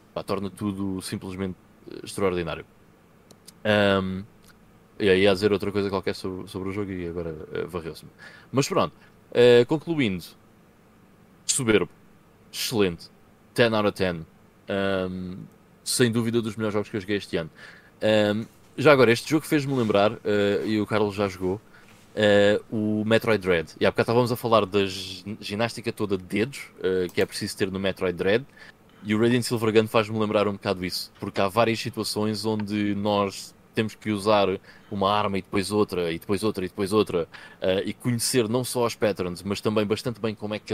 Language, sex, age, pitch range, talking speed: Portuguese, male, 20-39, 95-110 Hz, 175 wpm